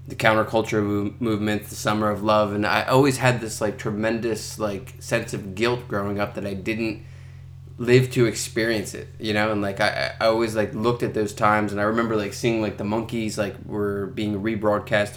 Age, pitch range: 20-39, 105-125 Hz